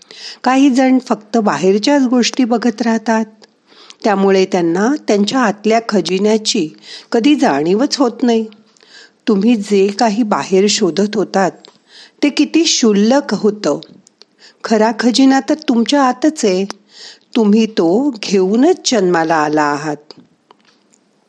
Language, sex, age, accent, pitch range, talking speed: Marathi, female, 50-69, native, 190-250 Hz, 85 wpm